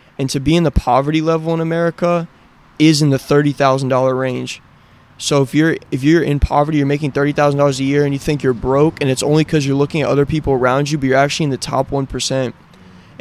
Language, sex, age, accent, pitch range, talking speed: English, male, 20-39, American, 130-145 Hz, 225 wpm